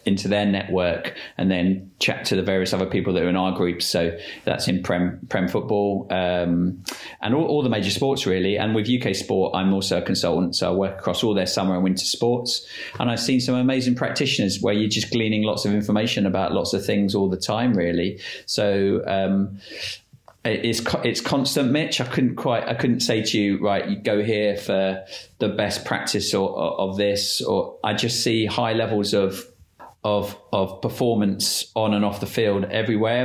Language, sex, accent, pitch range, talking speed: English, male, British, 95-115 Hz, 200 wpm